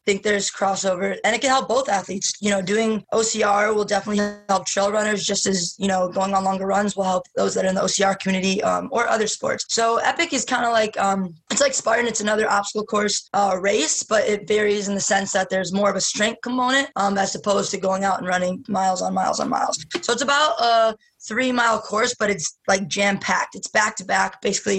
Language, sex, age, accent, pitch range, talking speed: English, female, 10-29, American, 195-230 Hz, 235 wpm